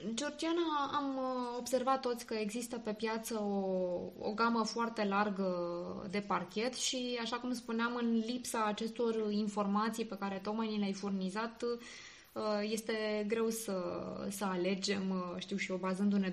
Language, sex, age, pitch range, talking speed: Romanian, female, 20-39, 195-240 Hz, 140 wpm